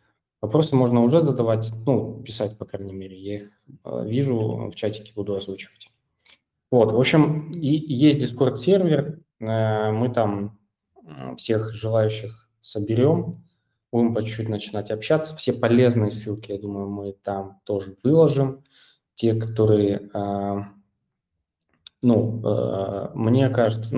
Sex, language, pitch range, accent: male, Russian, 105-125 Hz, native